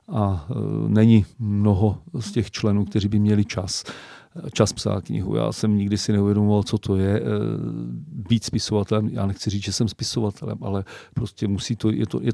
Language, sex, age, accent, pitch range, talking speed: Czech, male, 40-59, native, 100-115 Hz, 175 wpm